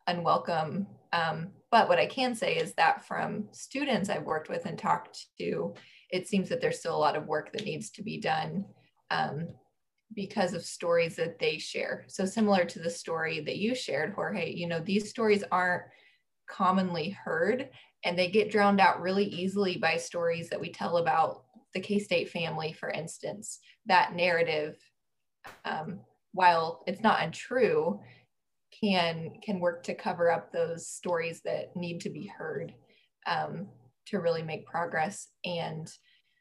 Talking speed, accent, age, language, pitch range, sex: 165 wpm, American, 20-39, English, 165-205 Hz, female